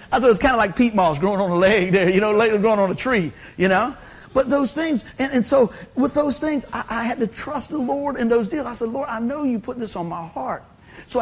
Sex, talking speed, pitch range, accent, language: male, 285 wpm, 170-235 Hz, American, English